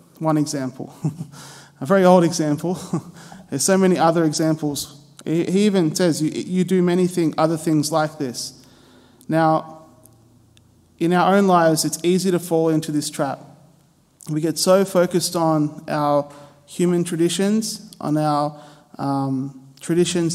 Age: 20-39